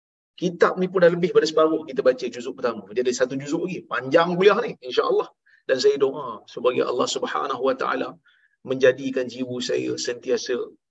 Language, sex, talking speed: Malayalam, male, 175 wpm